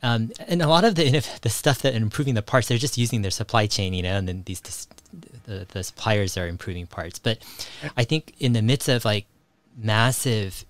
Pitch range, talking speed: 95-120 Hz, 210 wpm